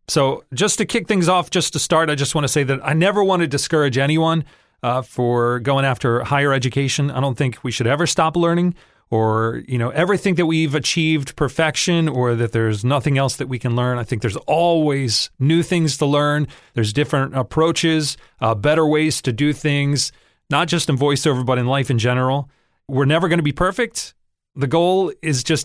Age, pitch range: 30-49, 125-160 Hz